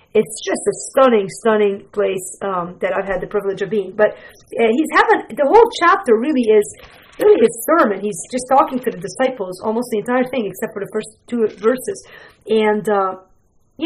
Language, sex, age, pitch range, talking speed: English, female, 40-59, 200-255 Hz, 190 wpm